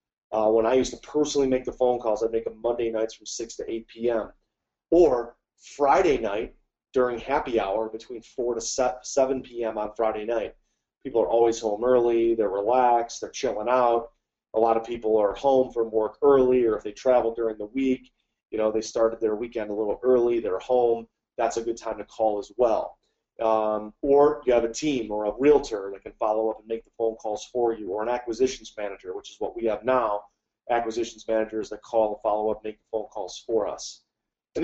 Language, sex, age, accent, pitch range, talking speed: English, male, 30-49, American, 110-130 Hz, 210 wpm